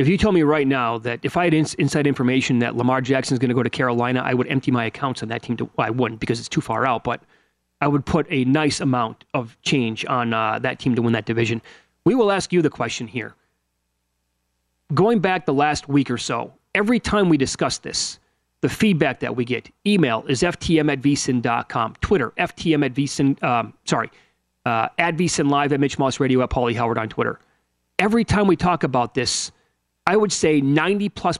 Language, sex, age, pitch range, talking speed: English, male, 30-49, 120-165 Hz, 215 wpm